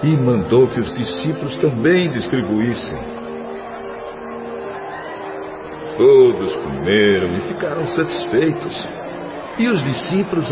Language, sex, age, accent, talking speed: Portuguese, male, 60-79, Brazilian, 85 wpm